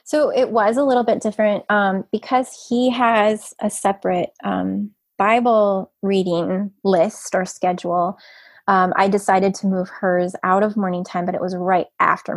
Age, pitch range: 20-39, 180-210 Hz